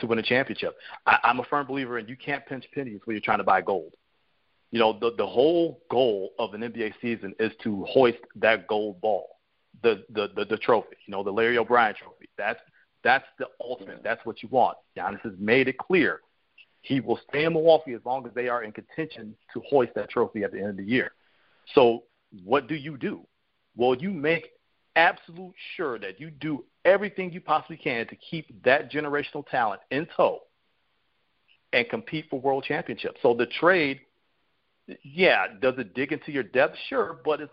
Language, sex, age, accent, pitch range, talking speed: English, male, 40-59, American, 120-155 Hz, 195 wpm